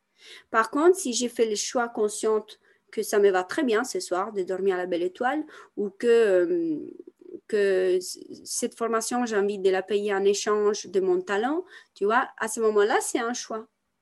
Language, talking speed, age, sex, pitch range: French, 195 wpm, 30-49, female, 220-285 Hz